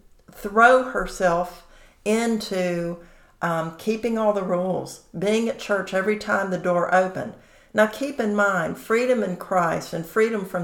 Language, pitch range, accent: English, 180-215 Hz, American